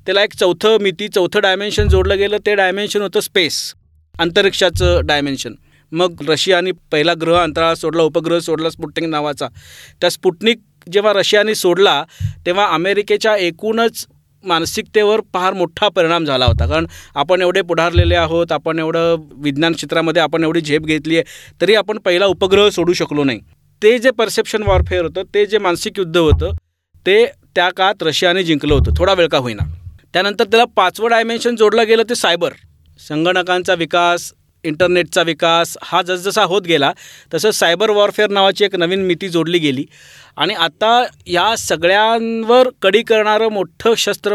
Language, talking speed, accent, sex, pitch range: Marathi, 150 wpm, native, male, 165-210 Hz